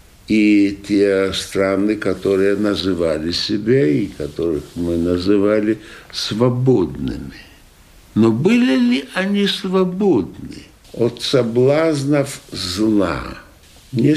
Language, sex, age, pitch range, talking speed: Russian, male, 60-79, 110-155 Hz, 85 wpm